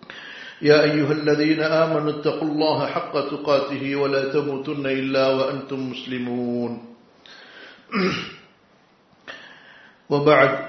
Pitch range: 135-150 Hz